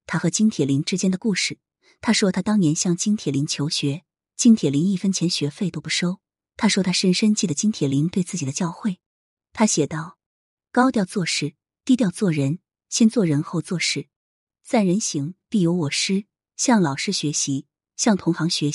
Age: 20-39